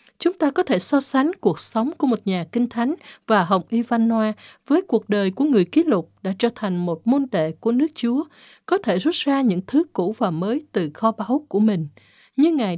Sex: female